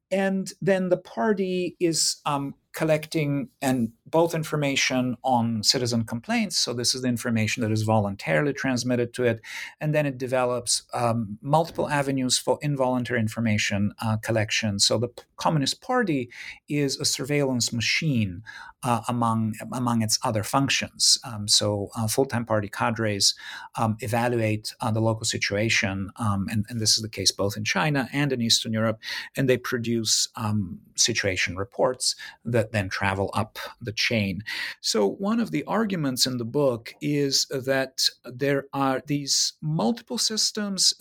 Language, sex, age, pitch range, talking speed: English, male, 50-69, 110-140 Hz, 150 wpm